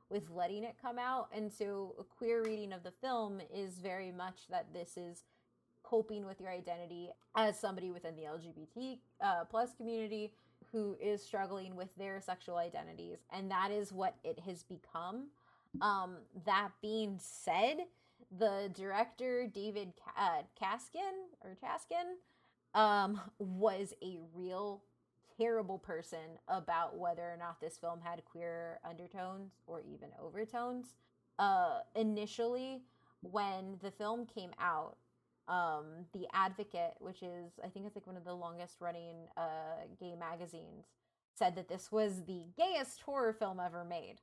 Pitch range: 175-220 Hz